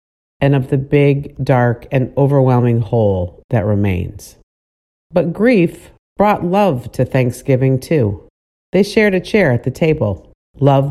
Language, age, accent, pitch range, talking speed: English, 50-69, American, 110-155 Hz, 140 wpm